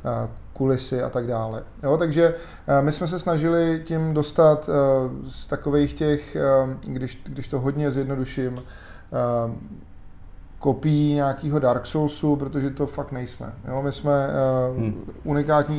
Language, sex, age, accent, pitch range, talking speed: Czech, male, 20-39, native, 120-145 Hz, 120 wpm